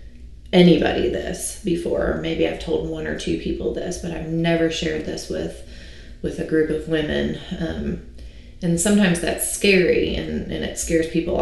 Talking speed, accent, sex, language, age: 170 wpm, American, female, English, 20-39